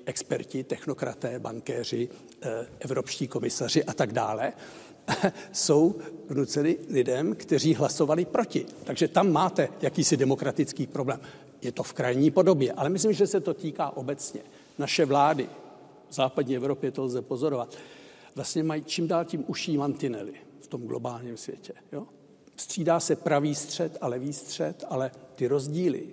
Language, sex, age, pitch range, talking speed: Czech, male, 60-79, 135-170 Hz, 140 wpm